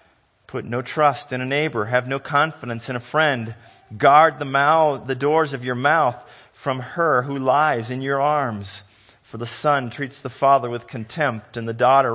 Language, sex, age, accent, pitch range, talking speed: English, male, 40-59, American, 105-135 Hz, 190 wpm